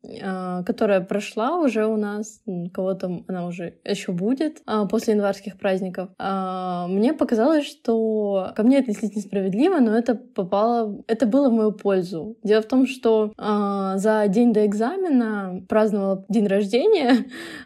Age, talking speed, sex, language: 20-39, 135 wpm, female, Russian